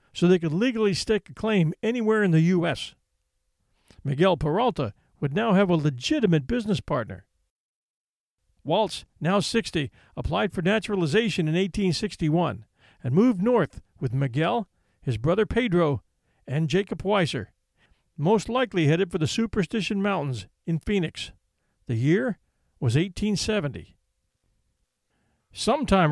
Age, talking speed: 50-69, 120 wpm